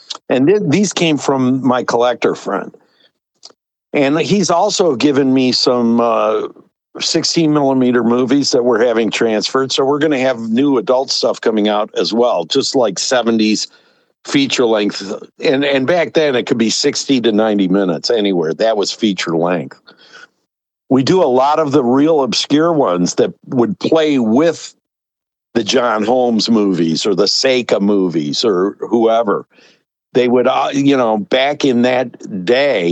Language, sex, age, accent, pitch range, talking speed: English, male, 60-79, American, 110-145 Hz, 155 wpm